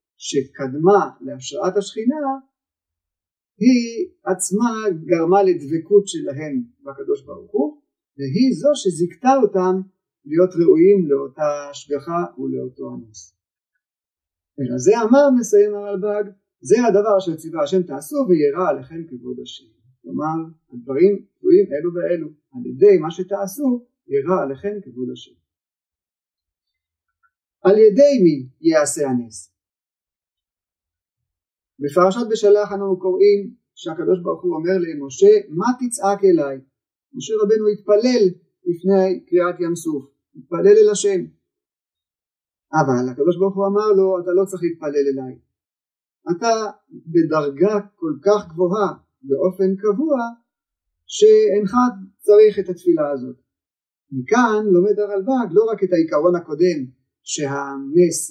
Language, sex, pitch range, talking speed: Hebrew, male, 140-215 Hz, 110 wpm